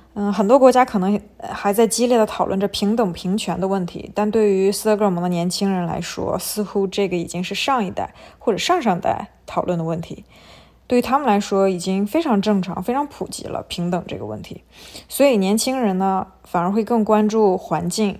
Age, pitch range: 20-39, 180-215 Hz